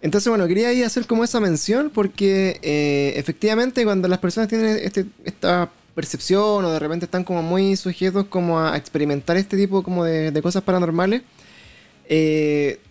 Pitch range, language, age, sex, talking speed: 155-195 Hz, Spanish, 20-39, male, 170 wpm